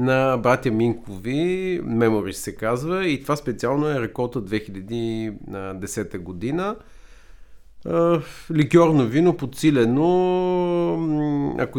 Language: Bulgarian